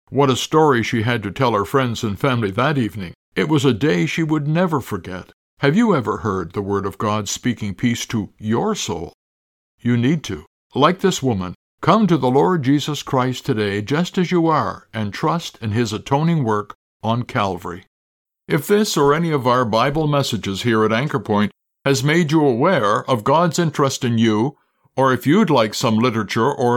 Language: English